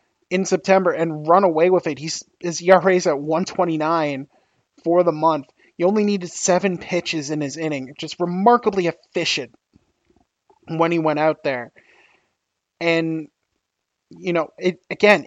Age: 20-39